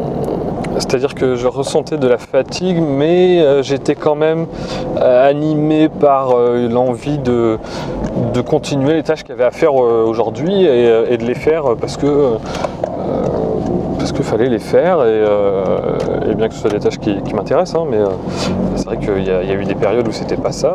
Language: French